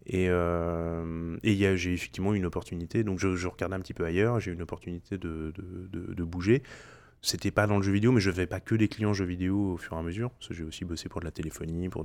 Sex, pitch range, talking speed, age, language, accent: male, 85-110 Hz, 280 wpm, 20-39, French, French